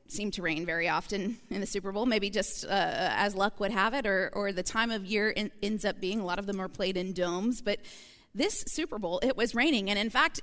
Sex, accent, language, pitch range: female, American, English, 200-265 Hz